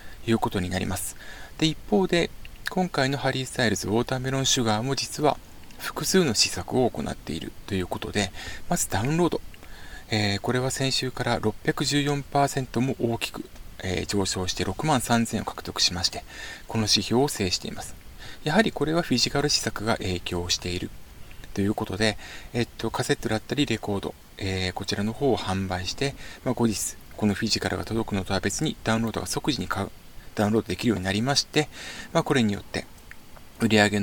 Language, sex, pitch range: Japanese, male, 95-145 Hz